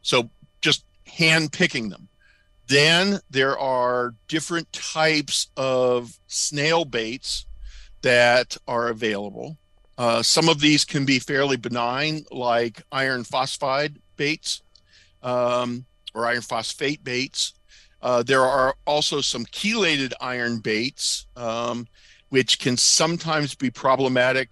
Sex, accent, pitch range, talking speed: male, American, 110-135 Hz, 115 wpm